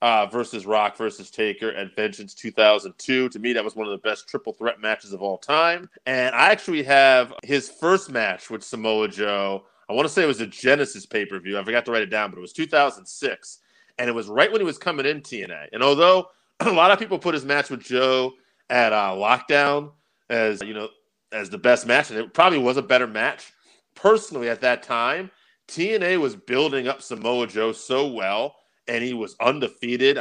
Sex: male